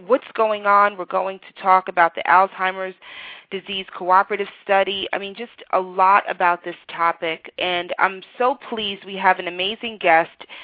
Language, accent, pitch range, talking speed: English, American, 180-215 Hz, 170 wpm